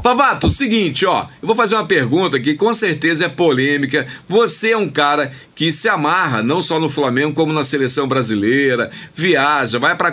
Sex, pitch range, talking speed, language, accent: male, 145-210 Hz, 185 wpm, Portuguese, Brazilian